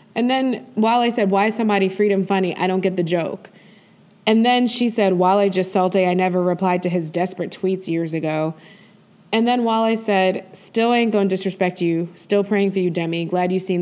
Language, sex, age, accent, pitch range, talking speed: English, female, 20-39, American, 185-255 Hz, 210 wpm